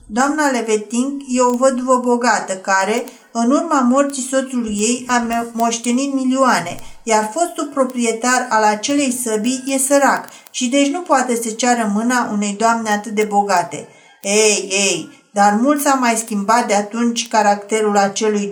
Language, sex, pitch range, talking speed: Romanian, female, 215-265 Hz, 150 wpm